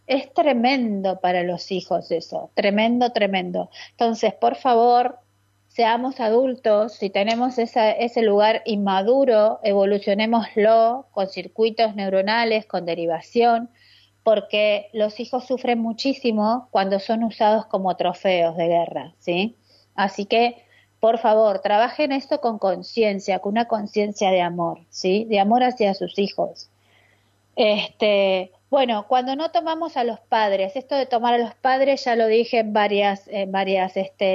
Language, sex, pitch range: Spanish, female, 200-245 Hz